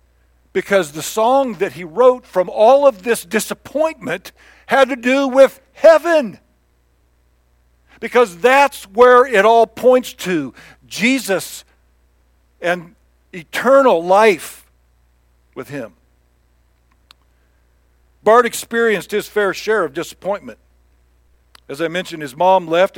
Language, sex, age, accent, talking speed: English, male, 50-69, American, 110 wpm